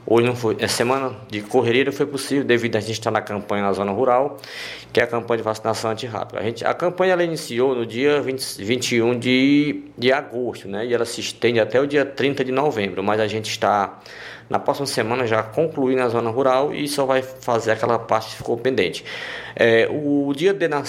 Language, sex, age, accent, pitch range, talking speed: Portuguese, male, 20-39, Brazilian, 110-140 Hz, 220 wpm